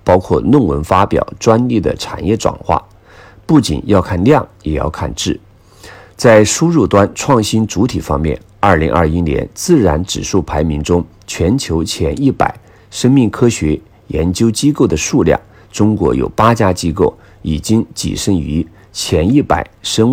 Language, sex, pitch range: Chinese, male, 80-110 Hz